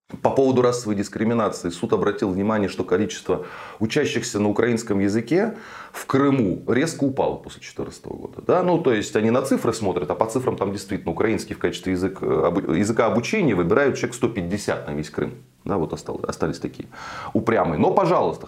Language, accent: Russian, native